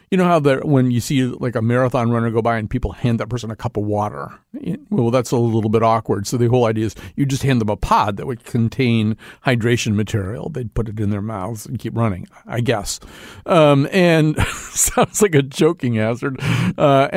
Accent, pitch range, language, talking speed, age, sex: American, 115-145 Hz, English, 215 wpm, 40-59, male